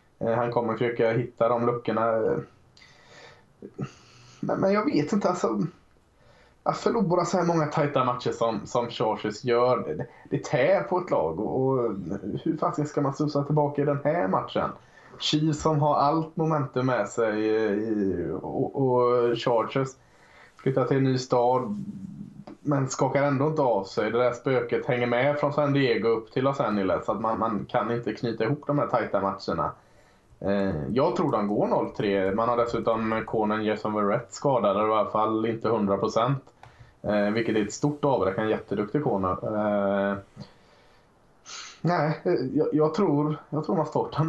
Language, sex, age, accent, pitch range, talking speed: Swedish, male, 20-39, Norwegian, 110-145 Hz, 165 wpm